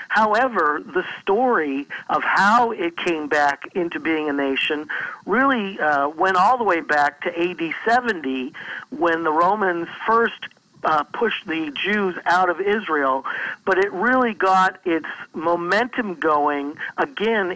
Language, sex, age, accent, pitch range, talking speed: English, male, 50-69, American, 160-200 Hz, 140 wpm